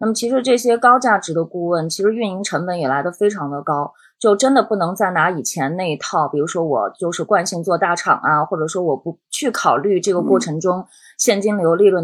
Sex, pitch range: female, 165-220 Hz